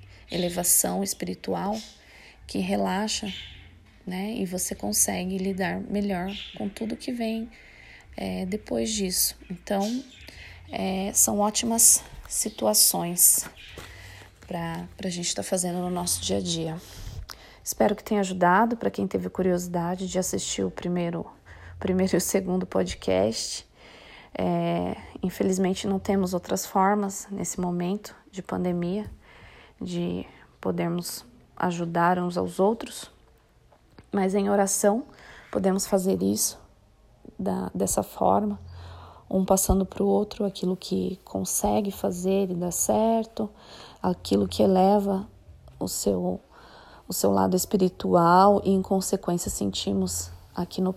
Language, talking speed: Portuguese, 115 wpm